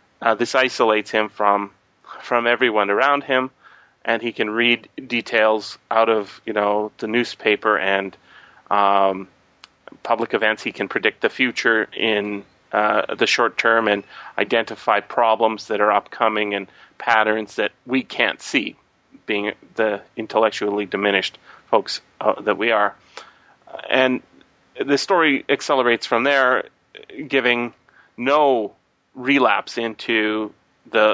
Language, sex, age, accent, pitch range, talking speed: English, male, 30-49, American, 105-125 Hz, 130 wpm